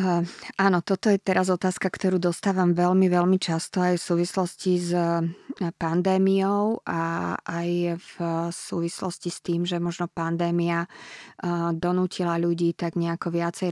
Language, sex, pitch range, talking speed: Slovak, female, 170-185 Hz, 125 wpm